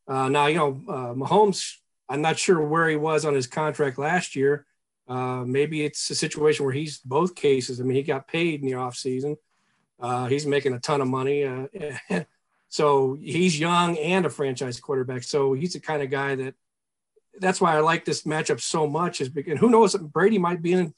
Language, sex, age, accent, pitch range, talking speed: English, male, 40-59, American, 135-160 Hz, 210 wpm